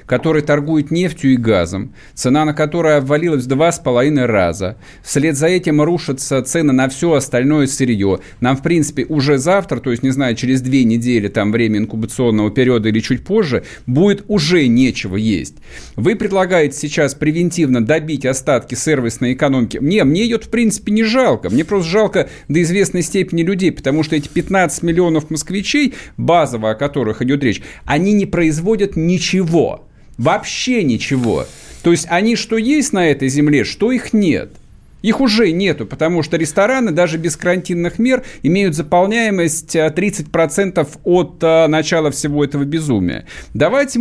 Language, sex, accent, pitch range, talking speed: Russian, male, native, 140-200 Hz, 155 wpm